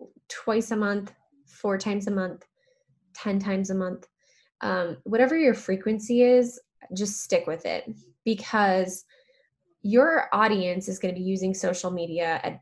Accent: American